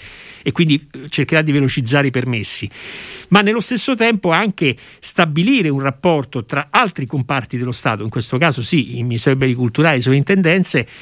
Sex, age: male, 50-69